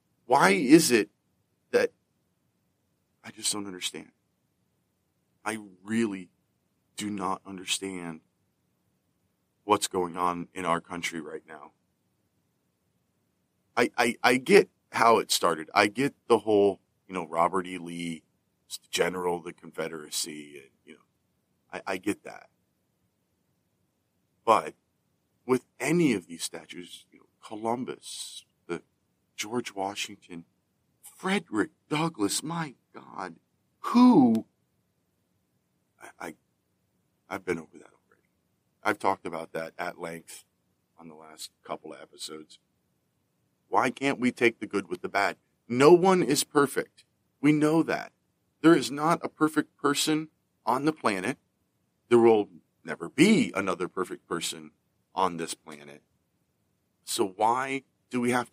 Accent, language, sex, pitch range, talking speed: American, English, male, 85-140 Hz, 125 wpm